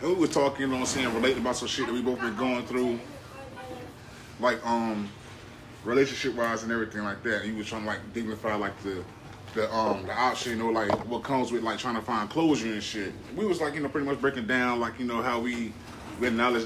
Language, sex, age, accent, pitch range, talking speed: English, male, 20-39, American, 110-130 Hz, 245 wpm